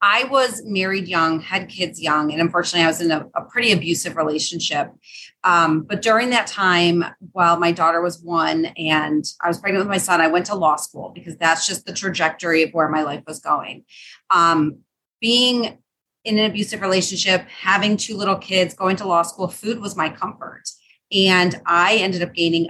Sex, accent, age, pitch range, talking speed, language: female, American, 30-49, 170-205 Hz, 195 wpm, English